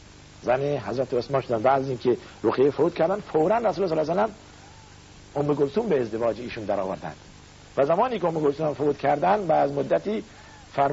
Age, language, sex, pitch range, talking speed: 50-69, Persian, male, 115-190 Hz, 185 wpm